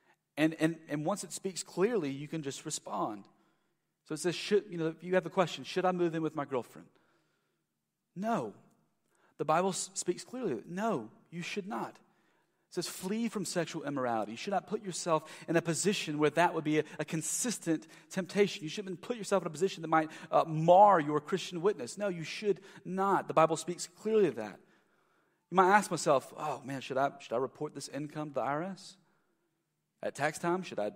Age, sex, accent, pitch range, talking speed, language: 40-59, male, American, 150-195 Hz, 205 wpm, English